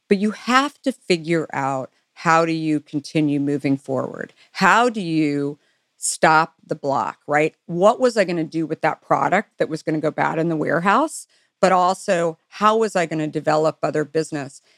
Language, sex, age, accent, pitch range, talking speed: English, female, 50-69, American, 155-195 Hz, 180 wpm